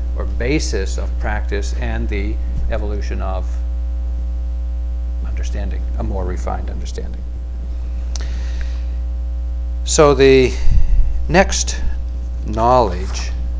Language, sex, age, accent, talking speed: English, male, 50-69, American, 75 wpm